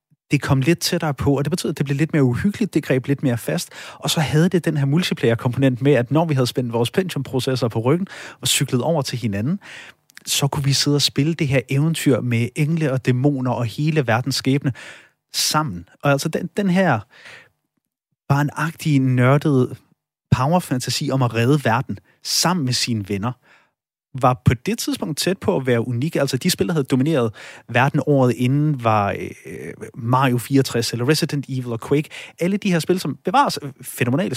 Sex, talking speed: male, 190 wpm